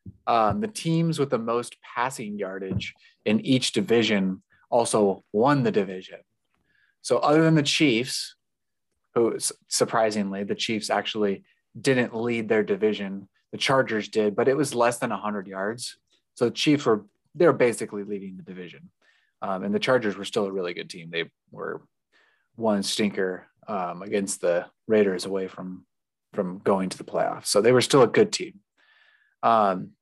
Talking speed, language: 165 wpm, English